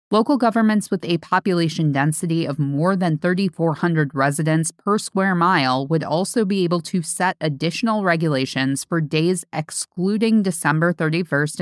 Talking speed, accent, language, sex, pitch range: 140 wpm, American, English, female, 150-185 Hz